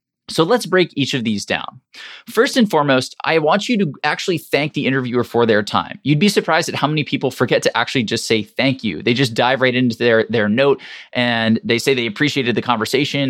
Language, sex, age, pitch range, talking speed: English, male, 20-39, 115-150 Hz, 225 wpm